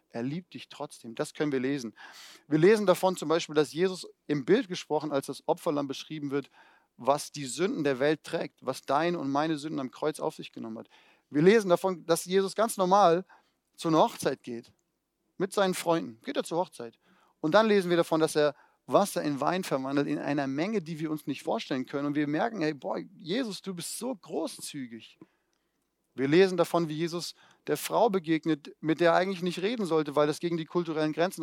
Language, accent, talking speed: German, German, 210 wpm